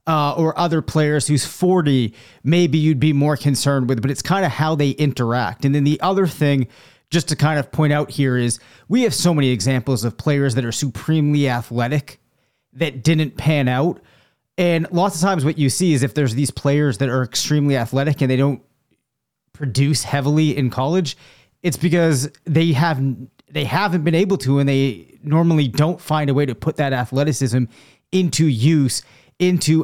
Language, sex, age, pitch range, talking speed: English, male, 30-49, 130-155 Hz, 185 wpm